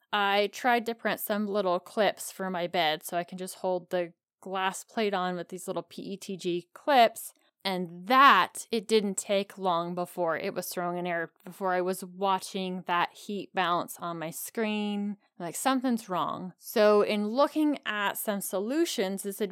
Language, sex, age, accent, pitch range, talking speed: English, female, 20-39, American, 180-230 Hz, 175 wpm